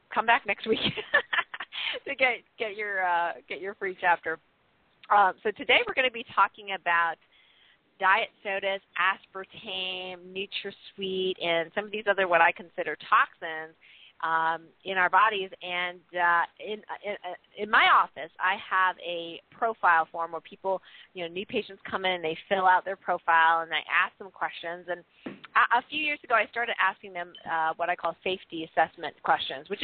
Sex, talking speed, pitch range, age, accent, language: female, 175 wpm, 165-200 Hz, 40-59, American, English